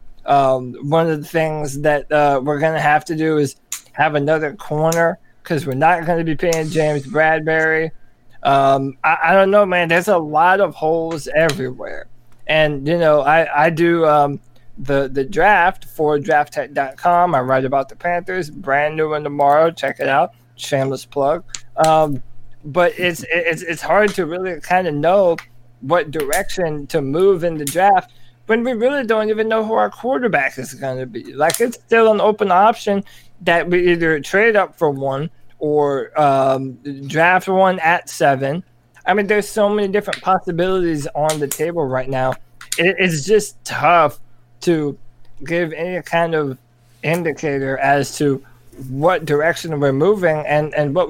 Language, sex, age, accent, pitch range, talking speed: English, male, 20-39, American, 140-175 Hz, 170 wpm